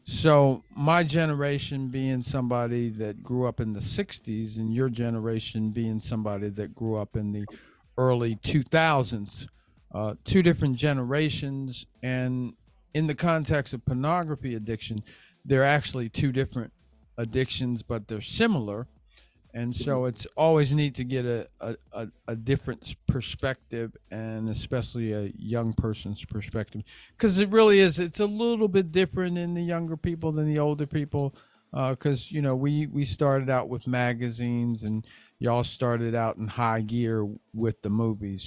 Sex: male